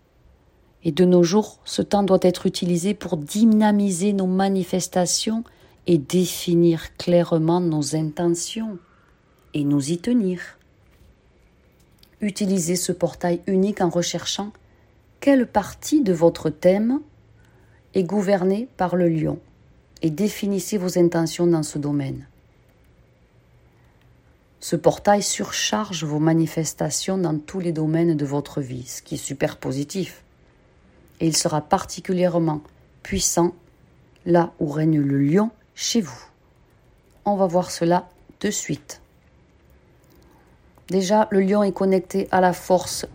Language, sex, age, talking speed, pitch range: French, female, 40-59, 120 wpm, 155-190 Hz